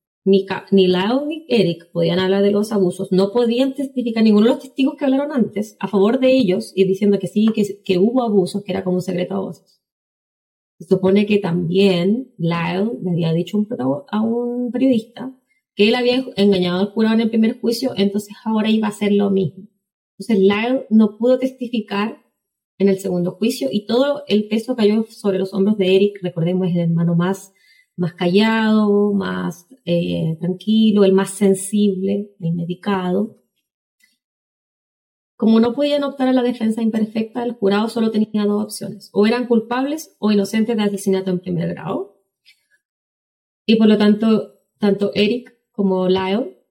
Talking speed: 170 wpm